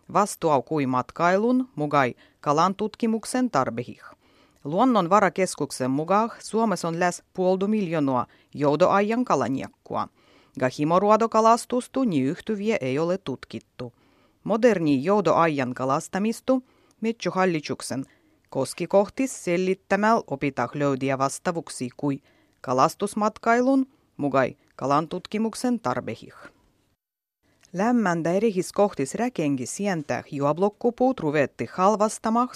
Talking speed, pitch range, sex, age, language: 80 wpm, 140-220 Hz, female, 30-49, Finnish